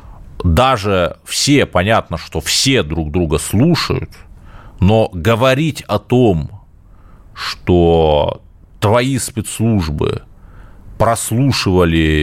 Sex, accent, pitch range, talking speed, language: male, native, 85-105 Hz, 80 wpm, Russian